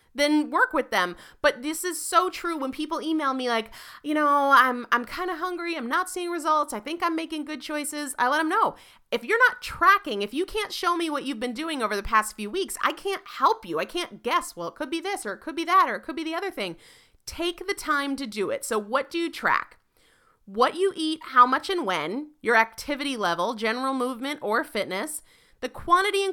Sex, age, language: female, 30-49, English